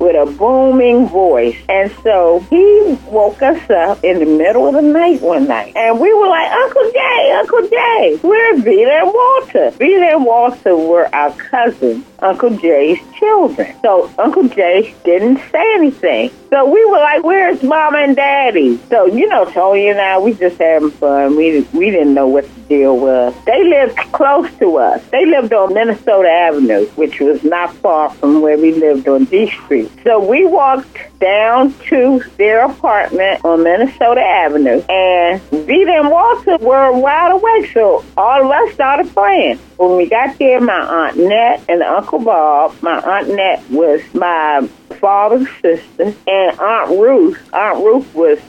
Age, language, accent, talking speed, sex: 40-59, English, American, 170 wpm, female